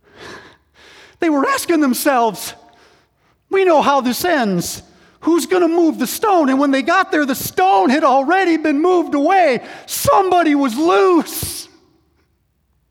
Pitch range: 275-345 Hz